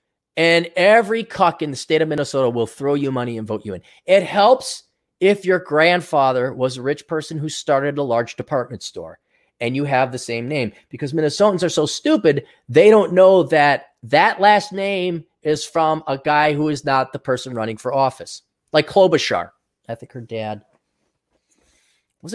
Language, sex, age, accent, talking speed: English, male, 30-49, American, 185 wpm